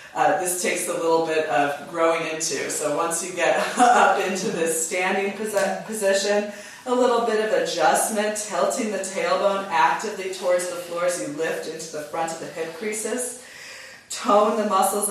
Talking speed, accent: 170 wpm, American